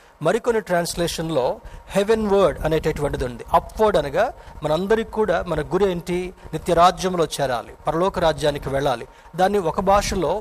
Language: Telugu